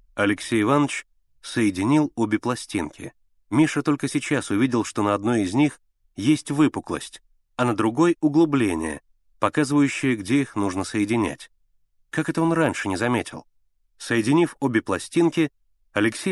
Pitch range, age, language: 100-145 Hz, 30-49, Russian